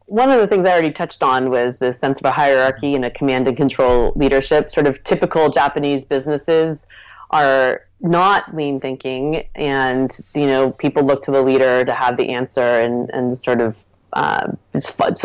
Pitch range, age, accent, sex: 130-155 Hz, 30-49, American, female